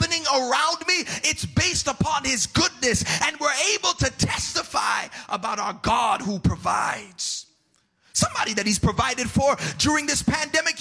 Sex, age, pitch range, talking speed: male, 30-49, 230-290 Hz, 140 wpm